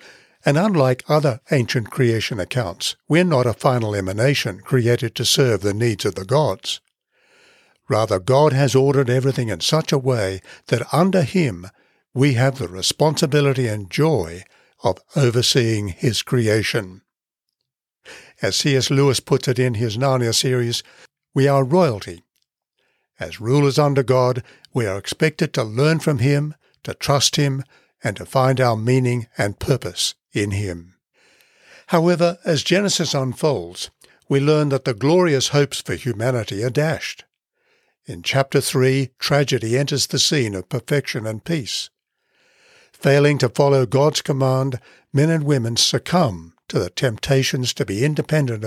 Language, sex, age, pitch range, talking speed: English, male, 60-79, 120-150 Hz, 145 wpm